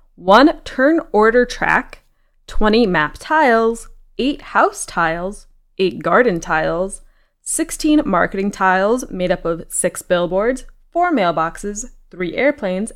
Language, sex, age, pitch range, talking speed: English, female, 20-39, 180-285 Hz, 115 wpm